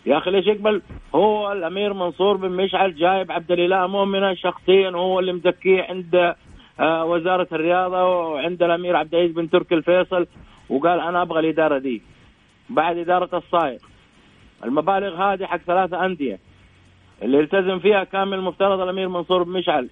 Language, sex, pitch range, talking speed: Arabic, male, 155-185 Hz, 145 wpm